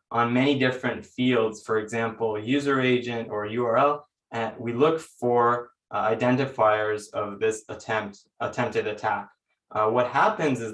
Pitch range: 110-125 Hz